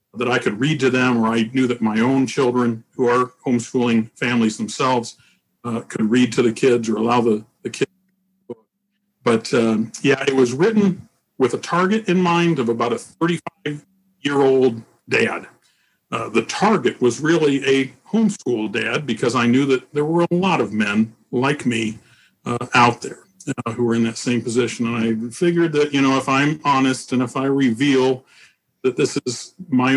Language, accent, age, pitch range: English, American, 50-69, 115-140 Hz